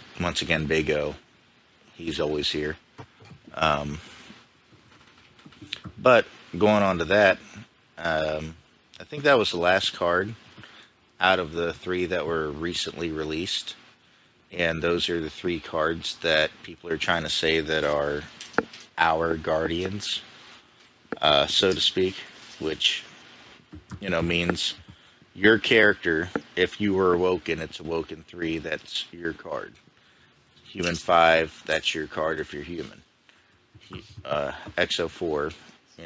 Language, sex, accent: English, male, American